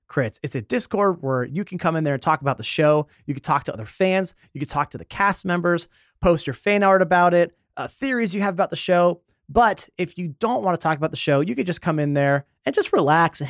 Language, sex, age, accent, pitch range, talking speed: English, male, 30-49, American, 140-190 Hz, 270 wpm